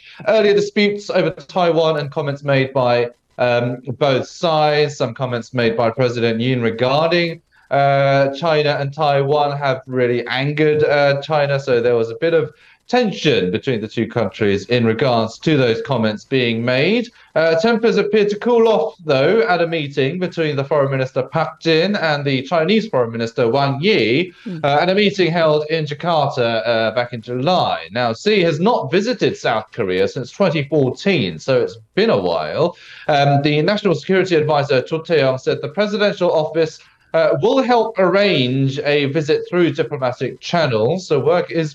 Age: 30-49